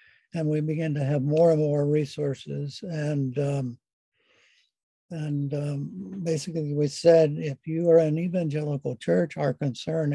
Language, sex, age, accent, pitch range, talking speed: English, male, 60-79, American, 145-165 Hz, 140 wpm